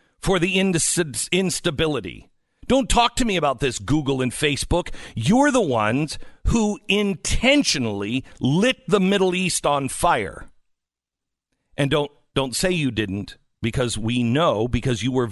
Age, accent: 50-69, American